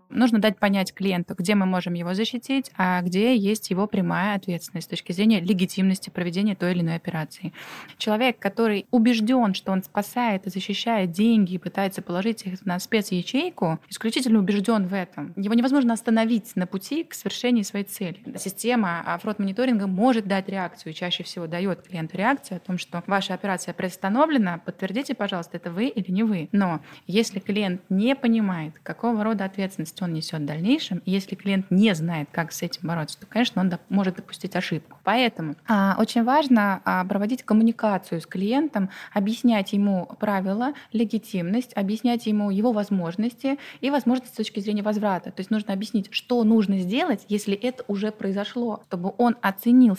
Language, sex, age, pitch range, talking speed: Russian, female, 20-39, 185-235 Hz, 165 wpm